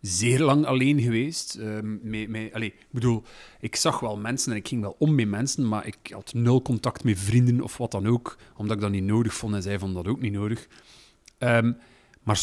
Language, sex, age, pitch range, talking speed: Dutch, male, 30-49, 115-160 Hz, 210 wpm